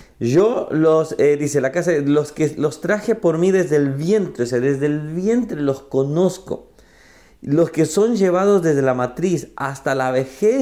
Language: Spanish